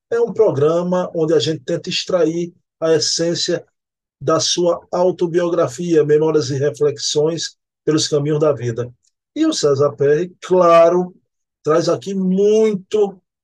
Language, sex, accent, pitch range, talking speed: Portuguese, male, Brazilian, 140-170 Hz, 125 wpm